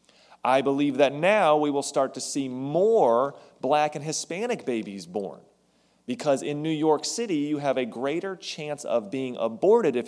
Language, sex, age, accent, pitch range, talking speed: English, male, 30-49, American, 105-145 Hz, 175 wpm